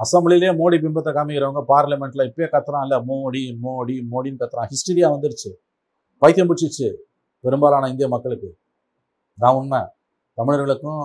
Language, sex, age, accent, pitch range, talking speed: Tamil, male, 40-59, native, 115-145 Hz, 120 wpm